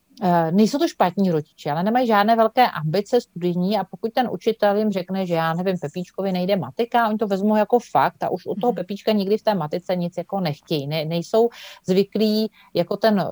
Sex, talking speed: female, 200 wpm